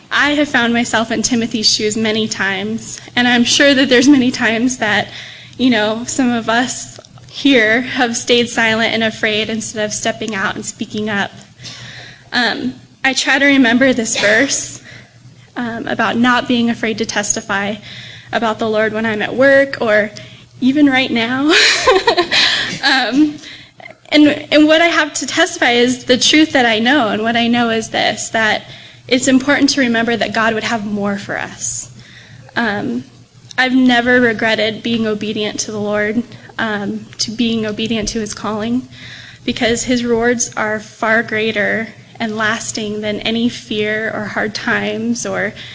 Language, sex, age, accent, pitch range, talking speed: English, female, 10-29, American, 215-250 Hz, 160 wpm